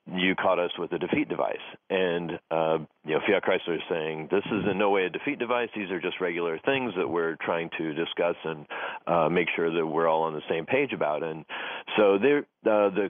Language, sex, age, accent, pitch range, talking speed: English, male, 40-59, American, 85-105 Hz, 225 wpm